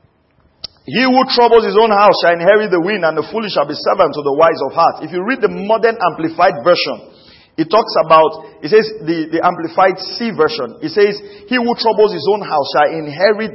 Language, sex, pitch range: English, male, 180-240 Hz